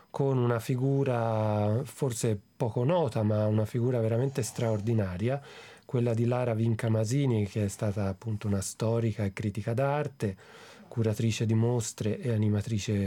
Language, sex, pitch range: Italian, male, 110-135 Hz